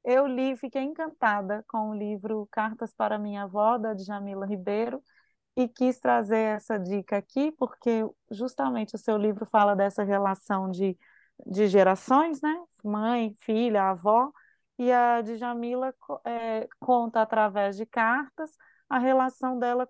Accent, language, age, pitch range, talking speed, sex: Brazilian, Portuguese, 20-39, 210-255 Hz, 140 wpm, female